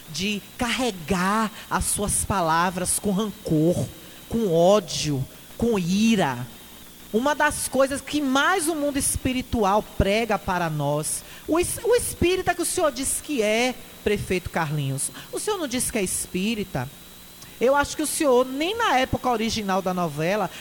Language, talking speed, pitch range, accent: Portuguese, 145 wpm, 170-245 Hz, Brazilian